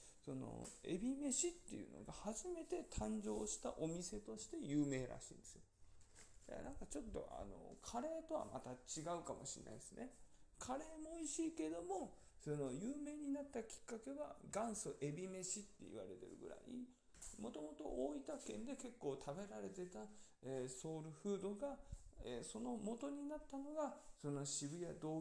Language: Japanese